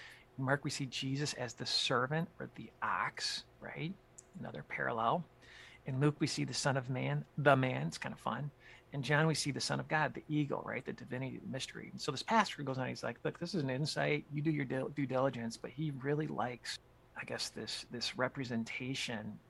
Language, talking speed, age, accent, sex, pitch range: English, 210 wpm, 40-59, American, male, 125-150 Hz